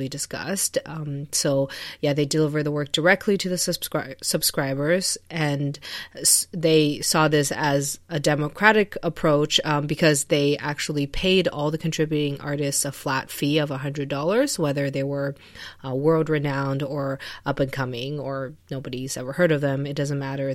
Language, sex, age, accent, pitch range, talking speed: English, female, 30-49, American, 140-175 Hz, 160 wpm